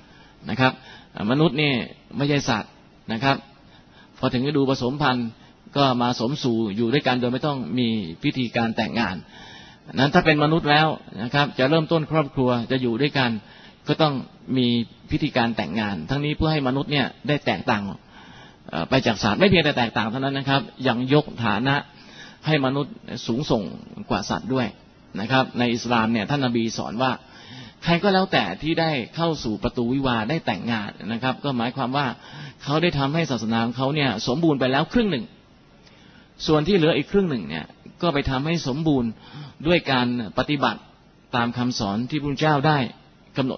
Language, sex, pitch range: Thai, male, 120-150 Hz